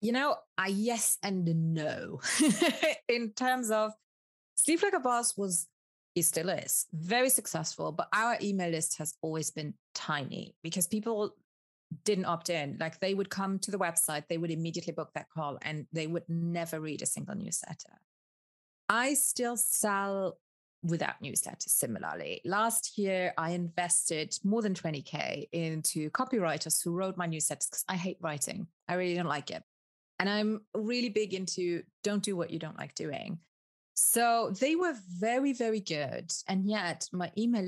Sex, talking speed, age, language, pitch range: female, 165 wpm, 30-49, English, 165-215 Hz